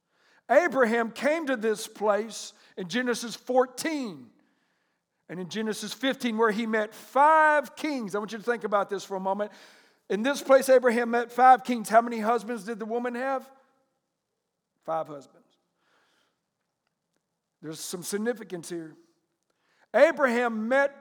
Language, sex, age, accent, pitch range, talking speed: English, male, 60-79, American, 220-275 Hz, 140 wpm